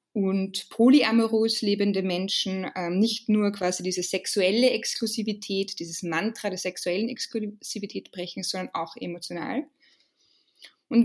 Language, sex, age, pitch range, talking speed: German, female, 20-39, 195-245 Hz, 115 wpm